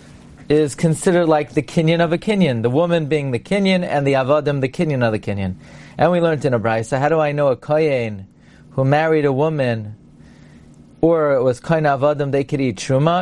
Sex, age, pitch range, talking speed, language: male, 40-59, 115-160 Hz, 210 wpm, English